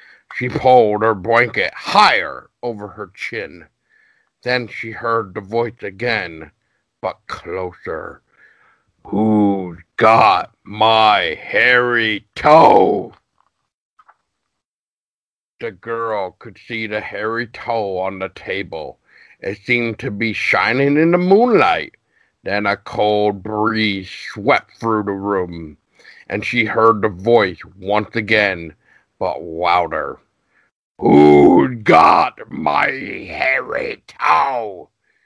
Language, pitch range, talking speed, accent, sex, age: English, 100-120 Hz, 105 wpm, American, male, 50-69